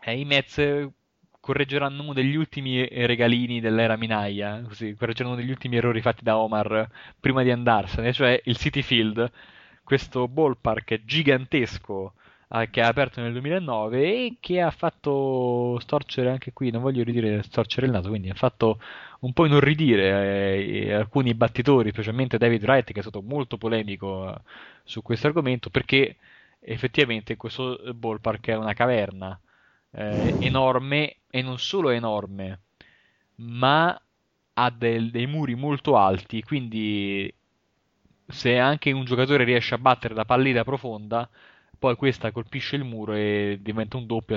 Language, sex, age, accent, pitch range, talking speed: Italian, male, 20-39, native, 110-135 Hz, 145 wpm